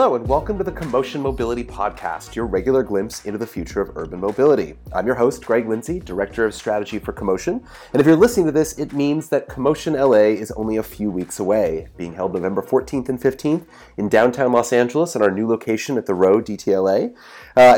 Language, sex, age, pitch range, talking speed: English, male, 30-49, 105-145 Hz, 215 wpm